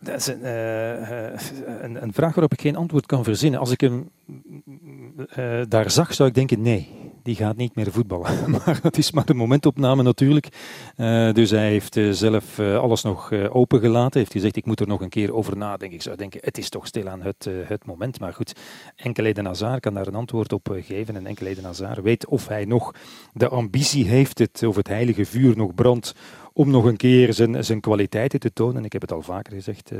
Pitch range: 105-130 Hz